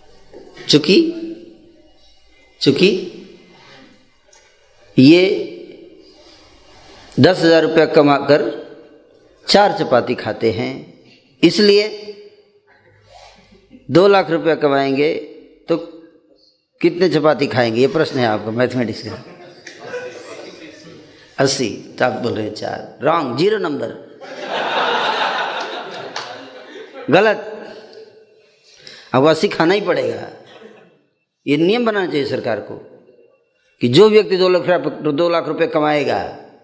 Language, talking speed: Hindi, 90 wpm